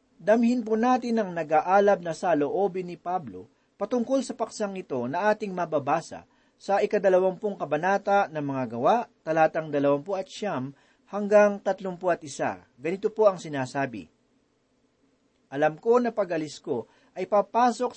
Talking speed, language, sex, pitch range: 140 wpm, Filipino, male, 155-220 Hz